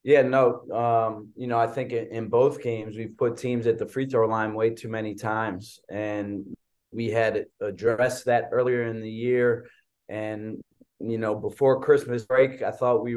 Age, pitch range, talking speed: 20-39, 110-125 Hz, 180 wpm